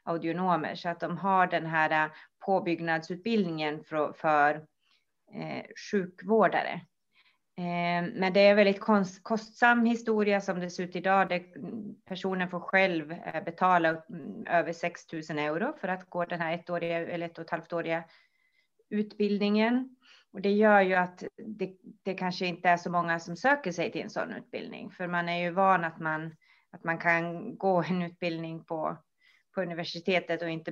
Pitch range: 165-205 Hz